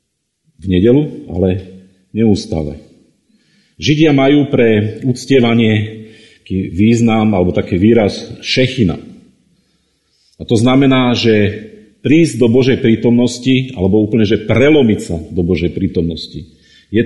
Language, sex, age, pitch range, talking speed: Slovak, male, 40-59, 100-120 Hz, 105 wpm